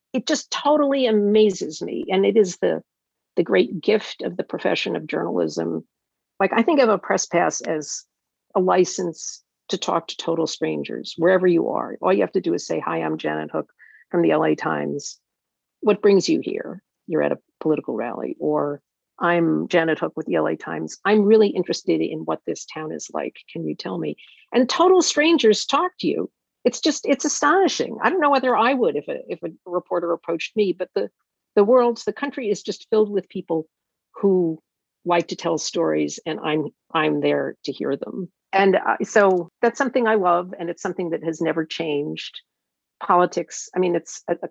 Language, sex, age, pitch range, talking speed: English, female, 50-69, 155-215 Hz, 195 wpm